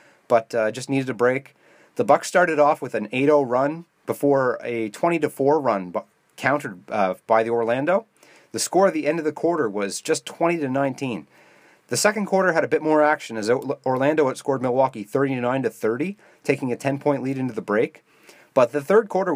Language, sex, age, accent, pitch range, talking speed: English, male, 30-49, American, 125-155 Hz, 180 wpm